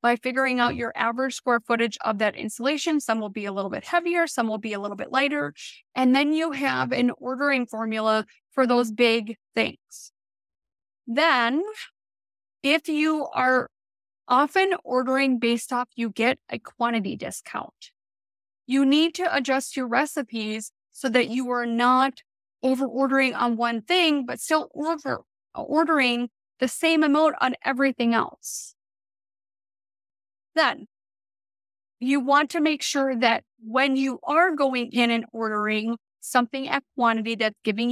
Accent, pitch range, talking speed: American, 225-275 Hz, 145 wpm